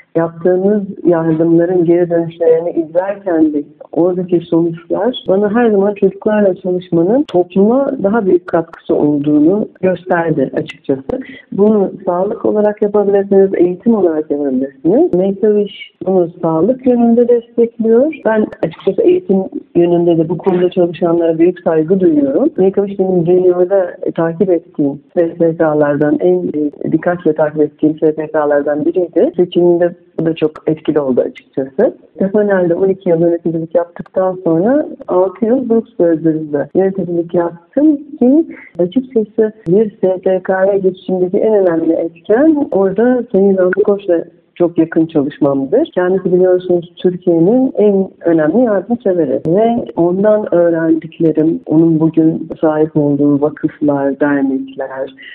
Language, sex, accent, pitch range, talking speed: Turkish, female, native, 160-200 Hz, 115 wpm